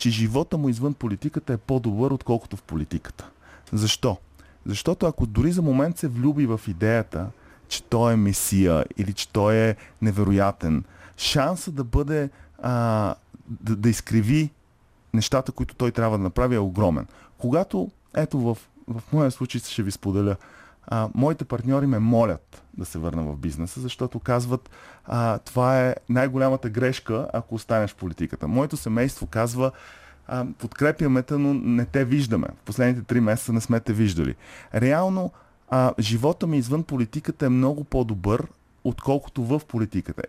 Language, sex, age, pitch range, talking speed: Bulgarian, male, 30-49, 100-135 Hz, 150 wpm